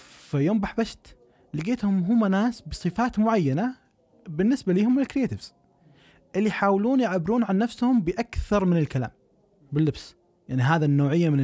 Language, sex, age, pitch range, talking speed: Arabic, male, 20-39, 145-210 Hz, 125 wpm